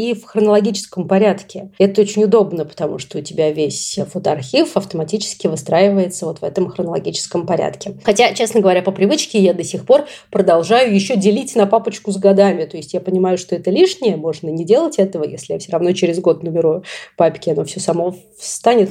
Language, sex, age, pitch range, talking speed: Russian, female, 30-49, 180-220 Hz, 185 wpm